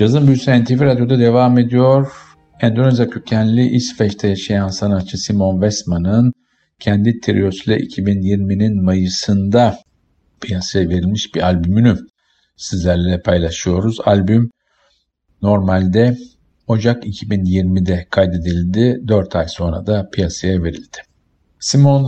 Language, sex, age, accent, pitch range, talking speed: Turkish, male, 50-69, native, 90-115 Hz, 95 wpm